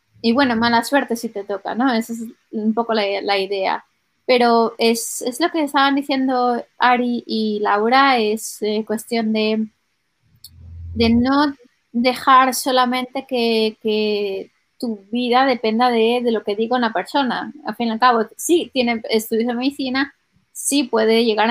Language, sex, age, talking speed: Spanish, female, 20-39, 160 wpm